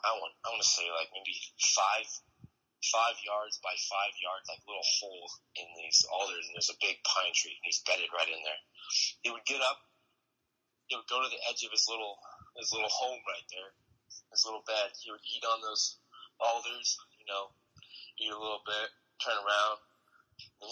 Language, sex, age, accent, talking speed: English, male, 20-39, American, 195 wpm